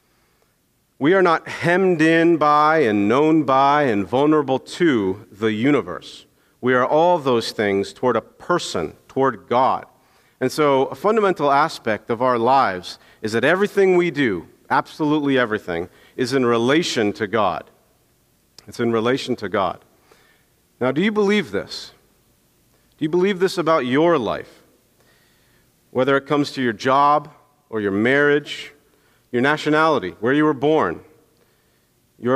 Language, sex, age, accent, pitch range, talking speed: English, male, 50-69, American, 115-150 Hz, 145 wpm